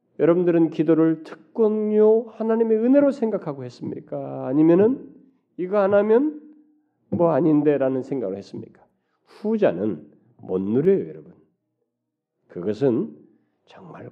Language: Korean